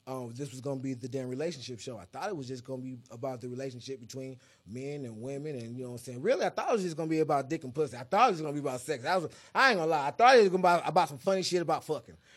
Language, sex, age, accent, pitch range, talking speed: English, male, 20-39, American, 125-155 Hz, 330 wpm